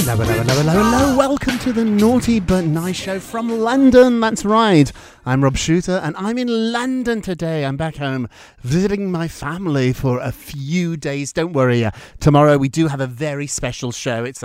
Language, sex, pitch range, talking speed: English, male, 130-190 Hz, 190 wpm